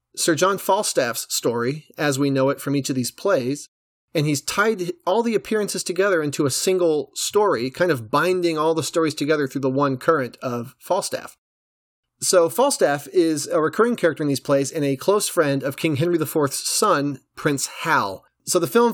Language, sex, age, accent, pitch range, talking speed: English, male, 30-49, American, 135-170 Hz, 190 wpm